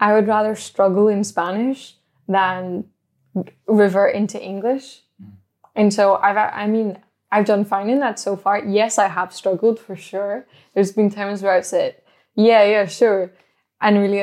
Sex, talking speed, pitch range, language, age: female, 170 wpm, 190-225 Hz, English, 10-29